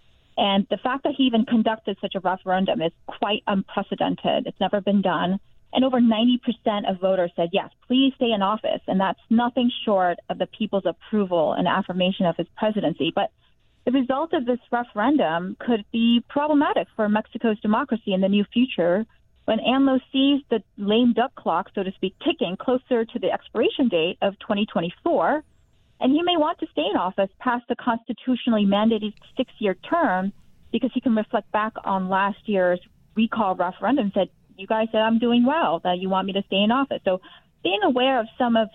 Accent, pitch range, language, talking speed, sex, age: American, 185-240 Hz, English, 190 wpm, female, 30-49